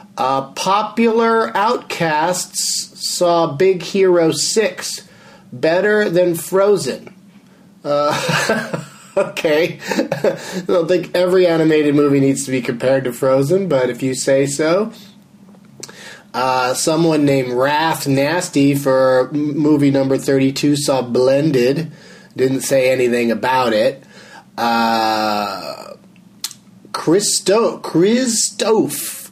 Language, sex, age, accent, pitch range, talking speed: English, male, 30-49, American, 130-185 Hz, 100 wpm